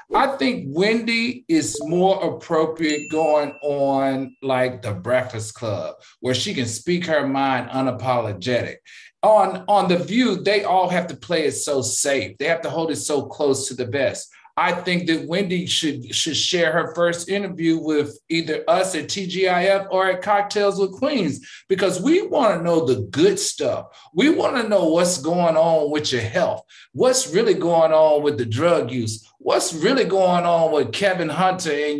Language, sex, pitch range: English, male, 140-190 Hz